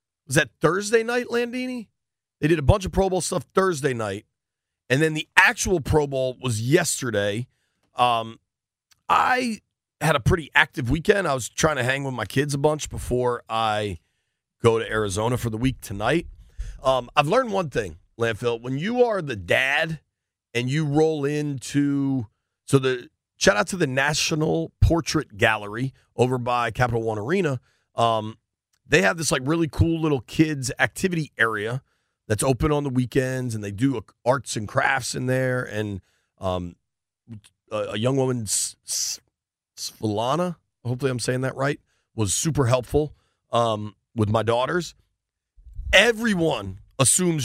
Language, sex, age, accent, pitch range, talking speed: English, male, 40-59, American, 110-155 Hz, 160 wpm